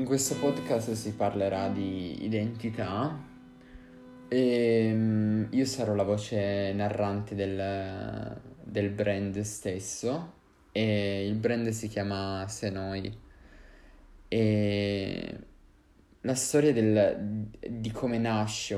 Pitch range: 95-110 Hz